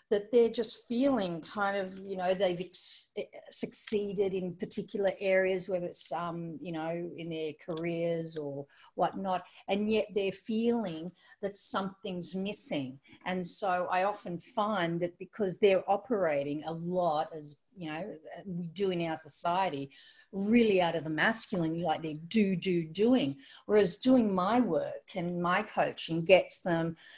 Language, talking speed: English, 150 wpm